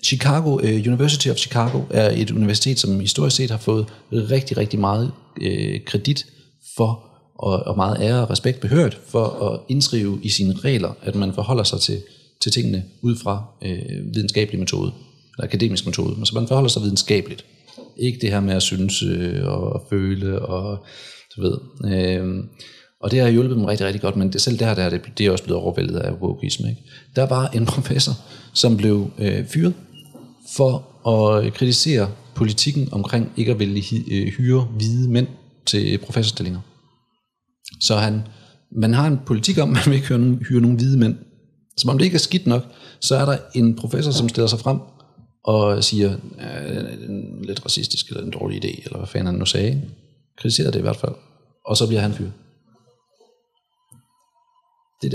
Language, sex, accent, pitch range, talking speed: Danish, male, native, 105-135 Hz, 185 wpm